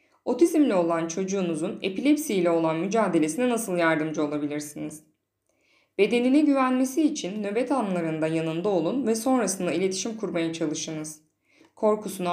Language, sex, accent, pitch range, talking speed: Turkish, female, native, 165-240 Hz, 110 wpm